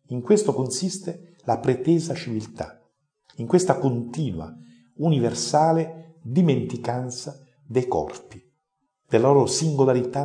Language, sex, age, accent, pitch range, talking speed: Italian, male, 50-69, native, 110-145 Hz, 95 wpm